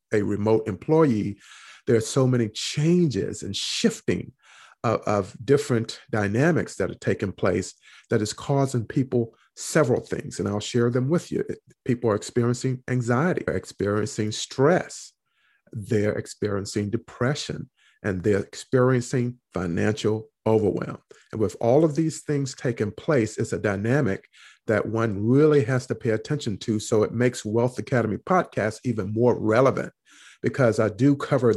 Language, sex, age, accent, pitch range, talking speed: English, male, 50-69, American, 105-130 Hz, 150 wpm